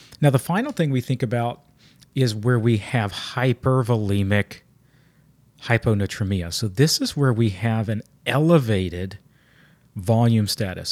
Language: English